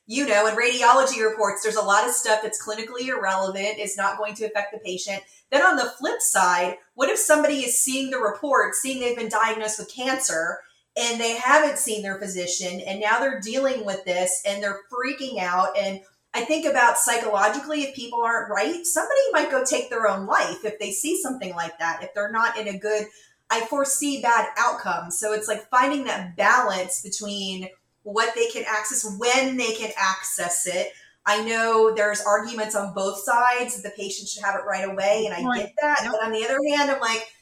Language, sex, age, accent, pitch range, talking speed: English, female, 30-49, American, 205-255 Hz, 205 wpm